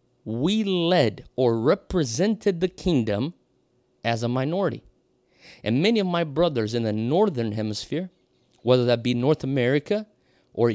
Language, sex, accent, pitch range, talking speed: English, male, American, 120-175 Hz, 135 wpm